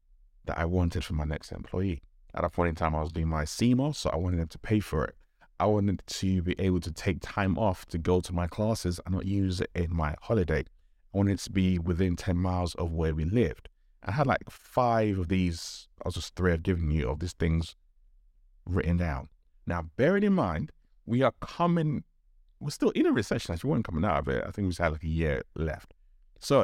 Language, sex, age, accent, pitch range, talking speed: English, male, 30-49, British, 80-115 Hz, 235 wpm